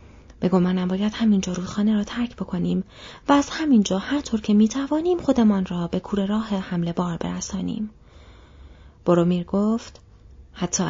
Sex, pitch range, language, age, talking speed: female, 170-225 Hz, Persian, 30-49, 155 wpm